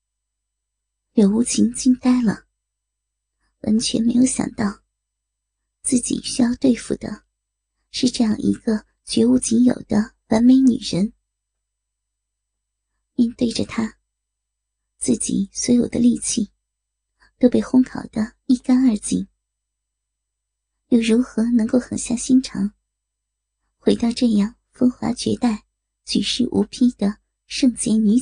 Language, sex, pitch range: Chinese, male, 180-245 Hz